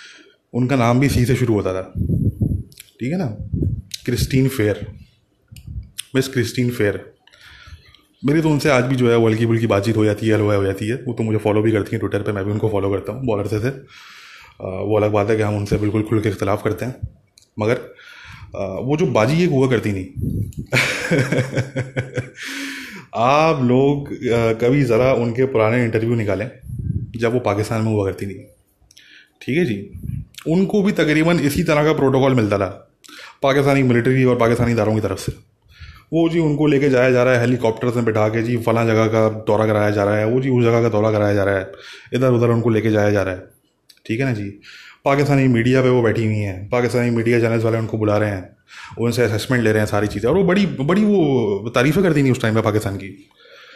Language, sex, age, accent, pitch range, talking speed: English, male, 20-39, Indian, 105-130 Hz, 145 wpm